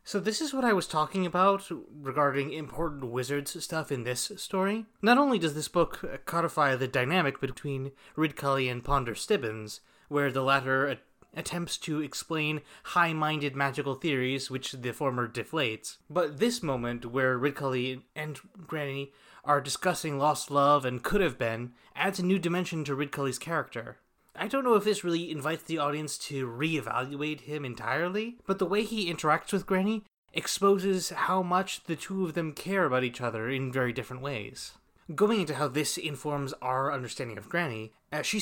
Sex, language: male, English